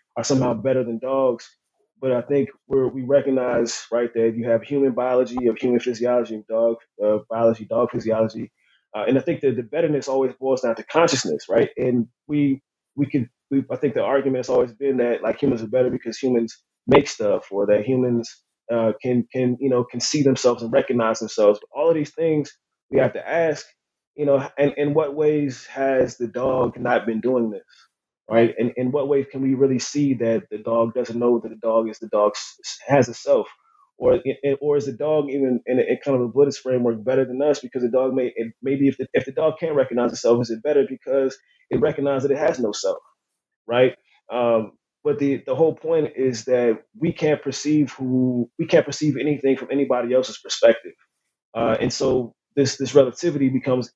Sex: male